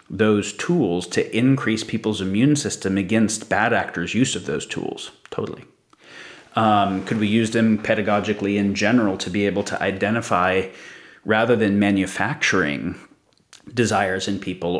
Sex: male